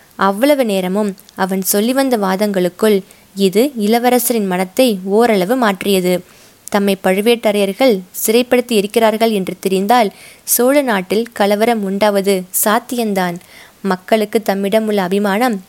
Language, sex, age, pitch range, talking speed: Tamil, female, 20-39, 200-240 Hz, 100 wpm